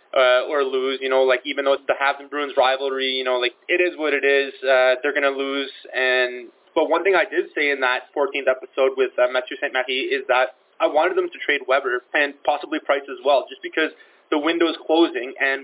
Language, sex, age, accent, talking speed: English, male, 20-39, American, 240 wpm